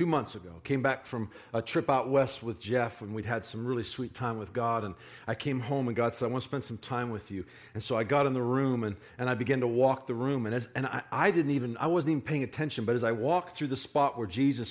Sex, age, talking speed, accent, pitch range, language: male, 40-59, 295 wpm, American, 110-130 Hz, English